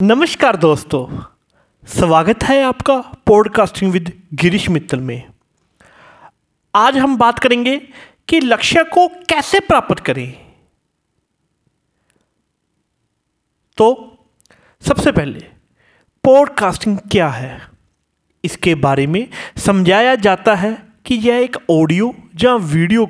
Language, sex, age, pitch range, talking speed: Hindi, male, 30-49, 140-235 Hz, 100 wpm